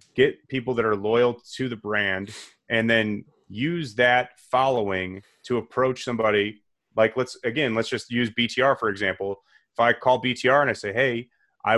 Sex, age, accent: male, 30-49, American